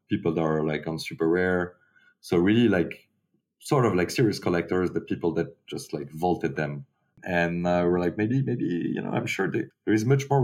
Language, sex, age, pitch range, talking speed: English, male, 30-49, 85-105 Hz, 215 wpm